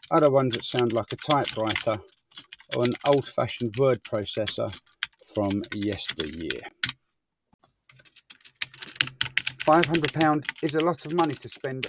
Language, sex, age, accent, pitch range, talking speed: English, male, 40-59, British, 120-160 Hz, 110 wpm